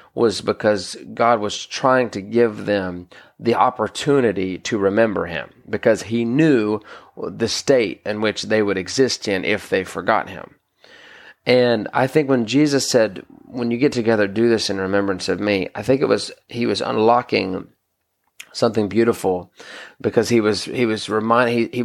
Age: 30-49